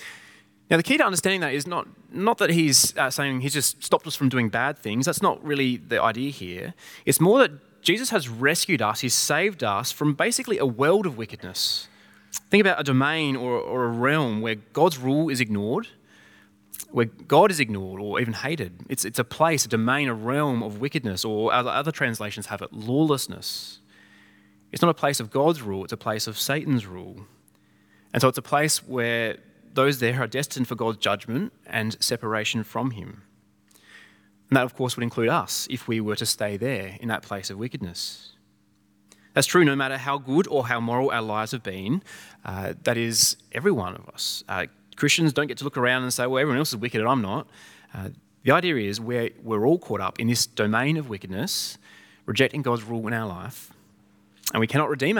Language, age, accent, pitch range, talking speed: English, 20-39, Australian, 105-140 Hz, 205 wpm